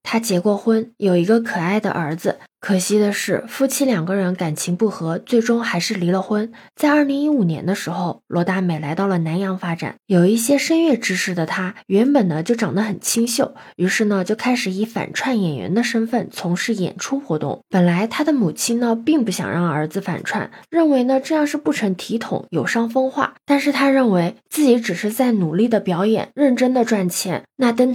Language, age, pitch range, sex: Chinese, 20-39, 190-245 Hz, female